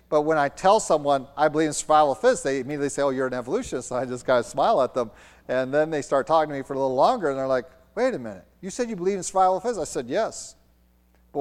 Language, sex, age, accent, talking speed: English, male, 40-59, American, 290 wpm